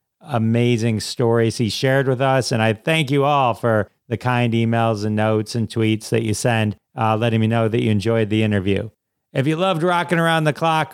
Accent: American